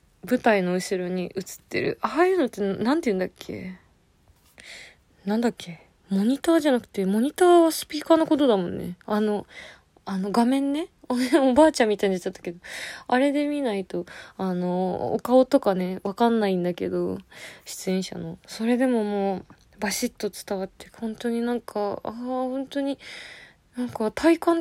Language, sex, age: Japanese, female, 20-39